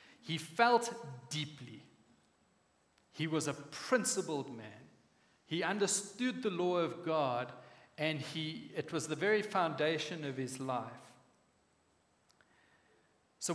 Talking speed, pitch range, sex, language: 110 wpm, 140-185 Hz, male, English